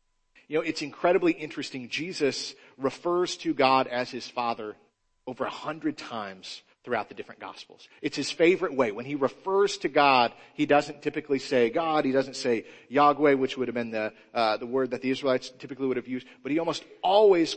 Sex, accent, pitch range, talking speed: male, American, 125-165 Hz, 195 wpm